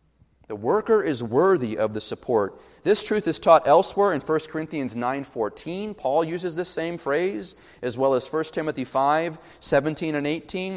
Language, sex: English, male